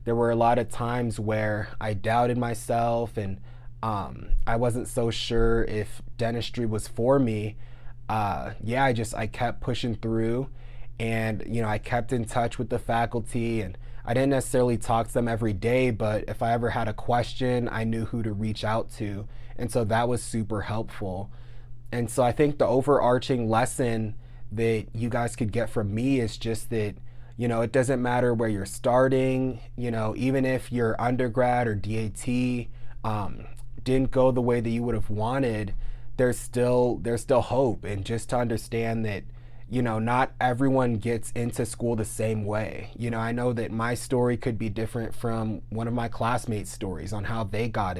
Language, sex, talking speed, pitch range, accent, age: English, male, 190 wpm, 110-120 Hz, American, 20-39